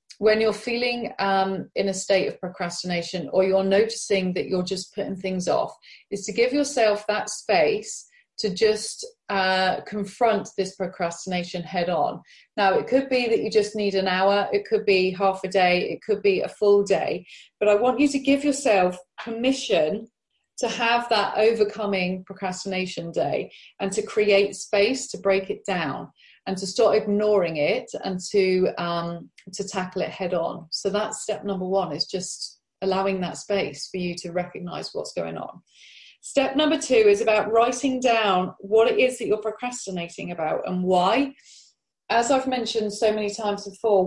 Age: 30-49